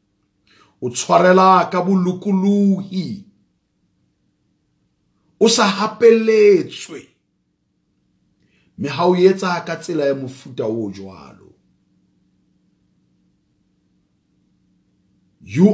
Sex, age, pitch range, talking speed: male, 50-69, 115-190 Hz, 40 wpm